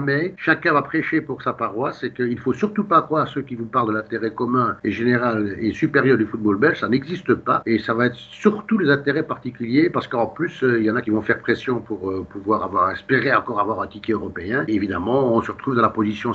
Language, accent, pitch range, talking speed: French, French, 105-135 Hz, 250 wpm